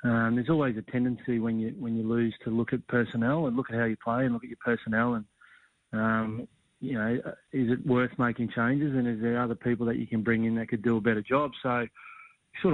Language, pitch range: English, 115-130 Hz